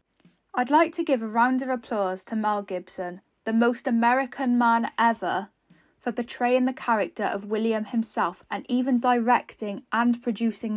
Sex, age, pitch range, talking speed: female, 10-29, 215-260 Hz, 155 wpm